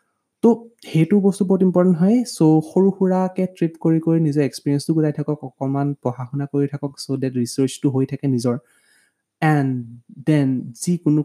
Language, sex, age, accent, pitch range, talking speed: Hindi, male, 20-39, native, 135-175 Hz, 100 wpm